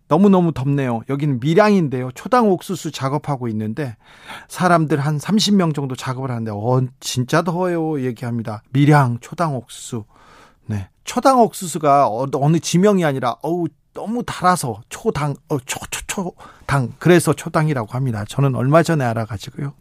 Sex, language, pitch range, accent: male, Korean, 130-180 Hz, native